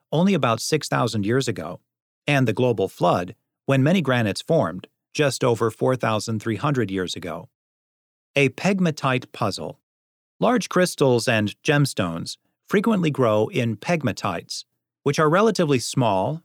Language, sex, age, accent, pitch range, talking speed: English, male, 40-59, American, 115-150 Hz, 120 wpm